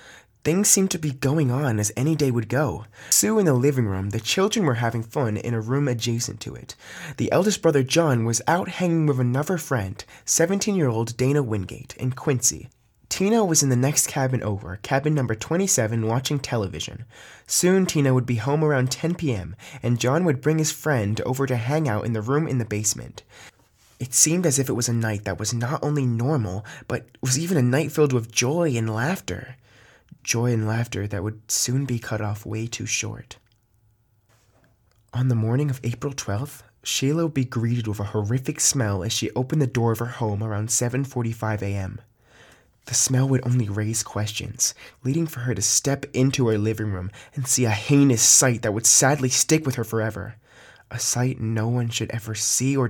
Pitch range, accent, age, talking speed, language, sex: 110-140 Hz, American, 20-39, 195 wpm, English, male